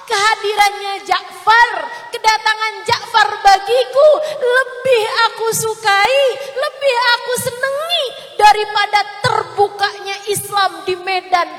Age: 30-49